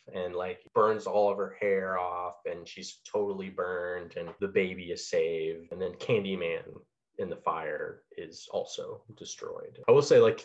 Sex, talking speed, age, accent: male, 170 wpm, 20-39, American